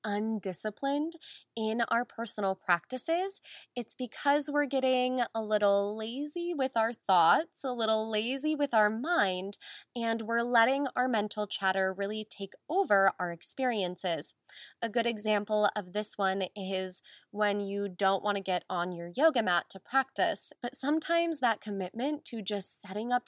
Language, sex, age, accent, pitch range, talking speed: English, female, 10-29, American, 200-255 Hz, 150 wpm